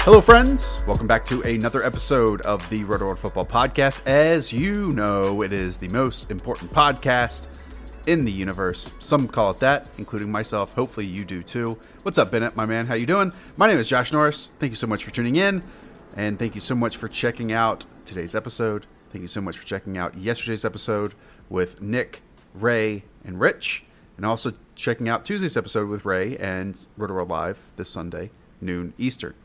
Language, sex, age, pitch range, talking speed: English, male, 30-49, 100-130 Hz, 195 wpm